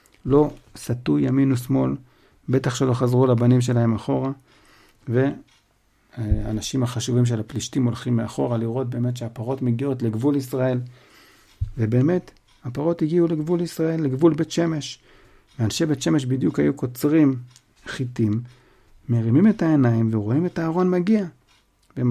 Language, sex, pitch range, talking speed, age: Hebrew, male, 110-135 Hz, 120 wpm, 60-79